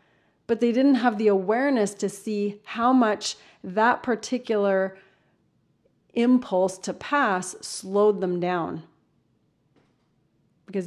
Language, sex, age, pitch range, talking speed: English, female, 30-49, 190-230 Hz, 105 wpm